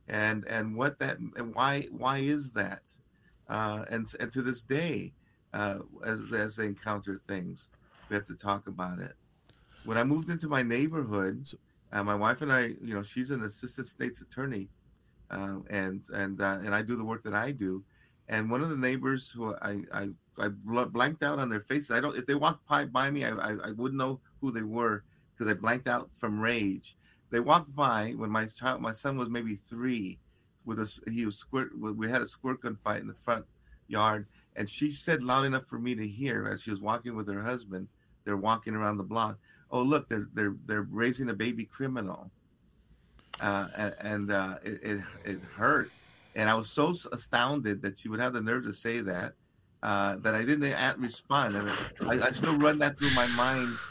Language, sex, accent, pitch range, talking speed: English, male, American, 105-130 Hz, 205 wpm